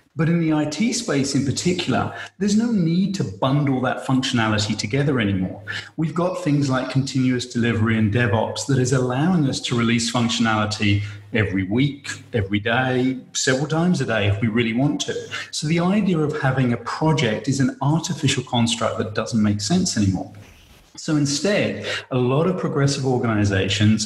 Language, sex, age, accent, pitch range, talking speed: English, male, 40-59, British, 110-140 Hz, 165 wpm